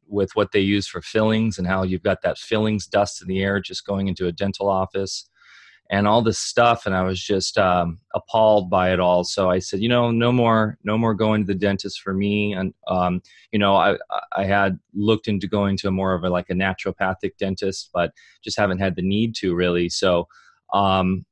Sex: male